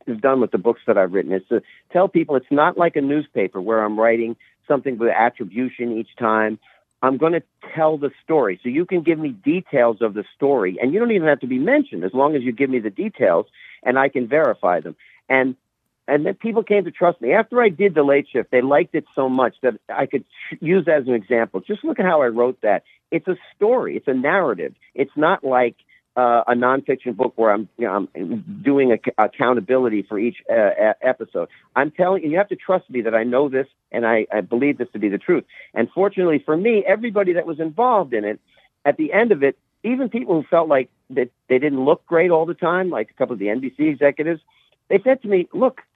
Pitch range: 120-185 Hz